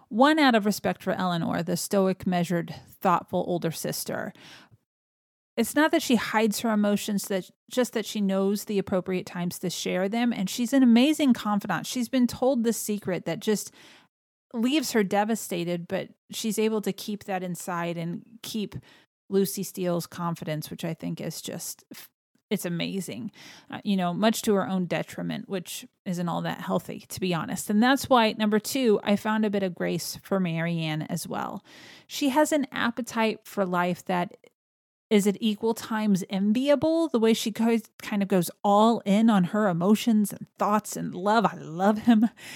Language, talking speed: English, 175 wpm